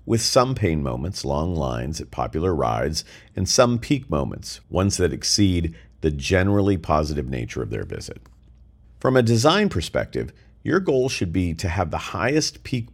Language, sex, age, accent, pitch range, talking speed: English, male, 50-69, American, 75-110 Hz, 165 wpm